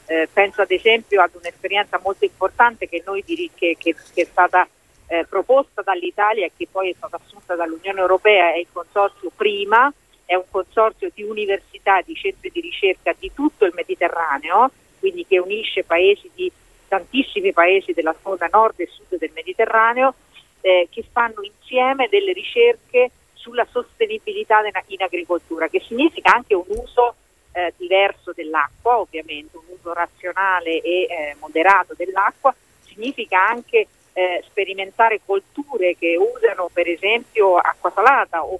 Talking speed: 150 wpm